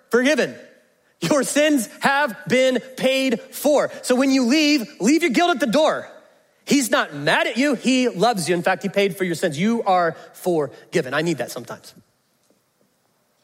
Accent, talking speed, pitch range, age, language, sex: American, 175 wpm, 185-280 Hz, 30-49, English, male